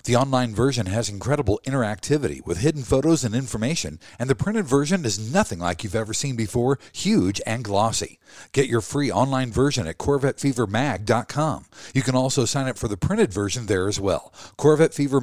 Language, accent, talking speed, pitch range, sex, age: English, American, 180 wpm, 110-155 Hz, male, 50-69